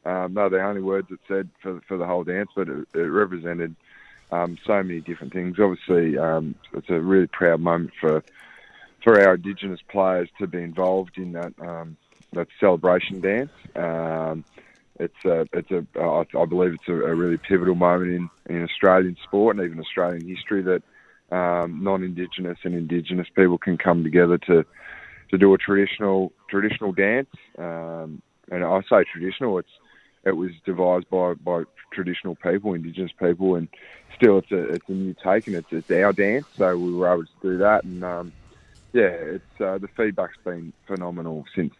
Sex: male